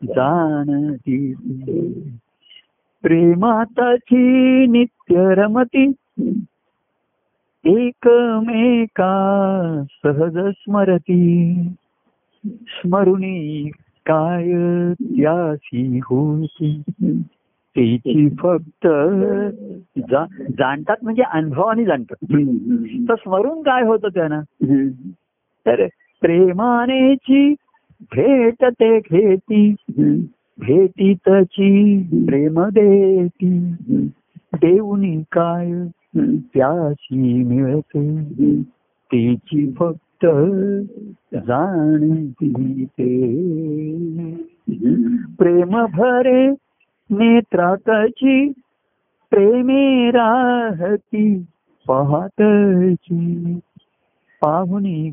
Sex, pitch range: male, 160-230 Hz